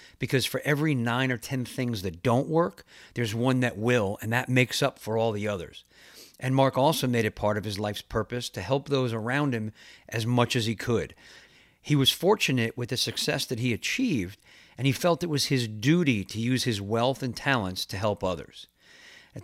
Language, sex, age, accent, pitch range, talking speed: English, male, 50-69, American, 110-130 Hz, 210 wpm